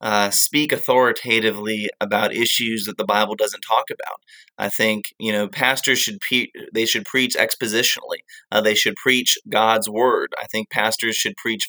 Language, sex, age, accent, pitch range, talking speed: English, male, 30-49, American, 110-130 Hz, 170 wpm